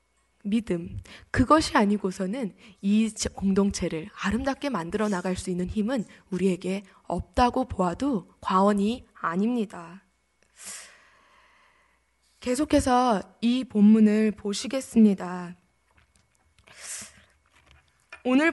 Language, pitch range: Korean, 195-250 Hz